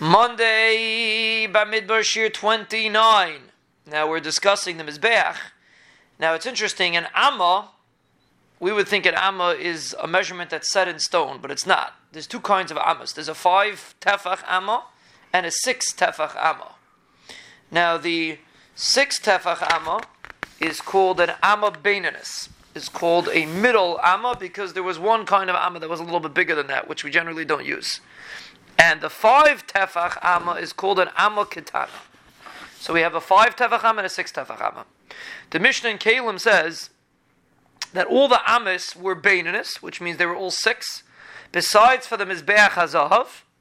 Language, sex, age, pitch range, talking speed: English, male, 30-49, 170-220 Hz, 170 wpm